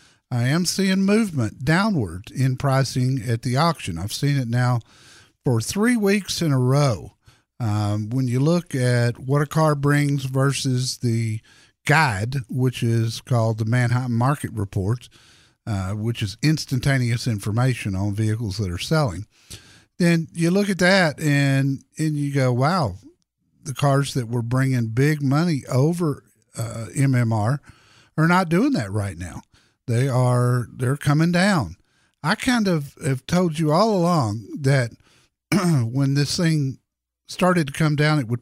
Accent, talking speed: American, 150 wpm